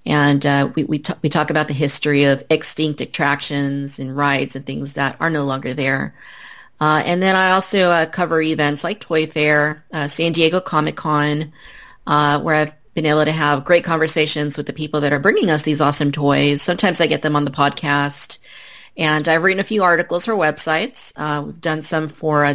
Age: 30-49